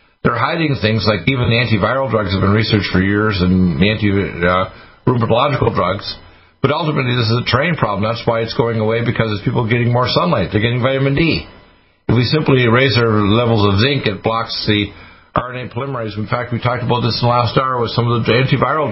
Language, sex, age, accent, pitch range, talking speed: English, male, 50-69, American, 105-130 Hz, 220 wpm